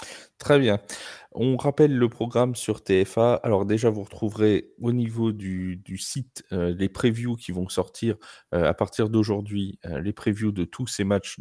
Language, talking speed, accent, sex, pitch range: French, 180 wpm, French, male, 90-115 Hz